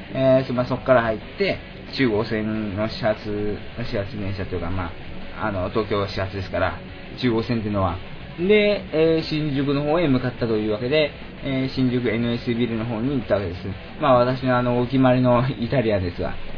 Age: 20-39